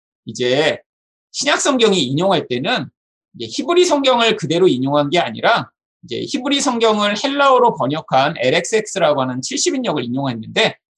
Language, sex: Korean, male